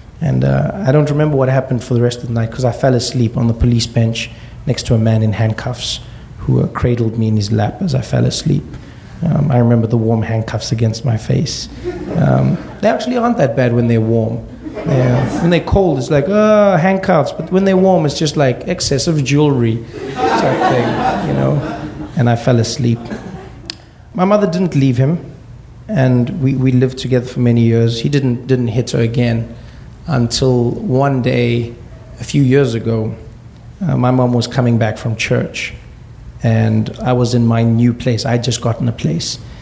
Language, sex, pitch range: English, male, 115-155 Hz